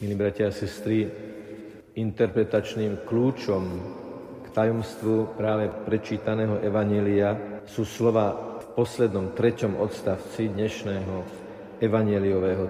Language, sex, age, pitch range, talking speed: Slovak, male, 50-69, 110-120 Hz, 85 wpm